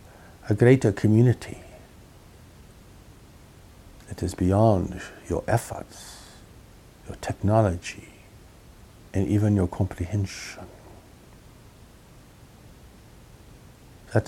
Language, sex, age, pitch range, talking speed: English, male, 60-79, 90-105 Hz, 65 wpm